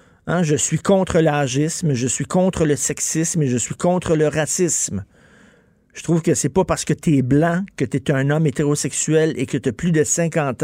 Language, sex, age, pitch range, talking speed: French, male, 50-69, 135-175 Hz, 220 wpm